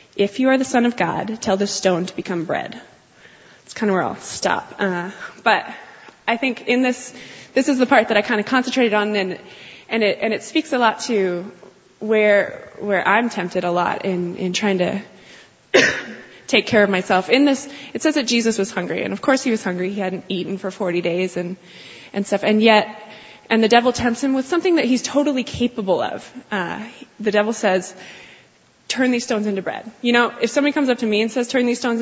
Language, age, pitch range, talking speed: English, 20-39, 195-245 Hz, 230 wpm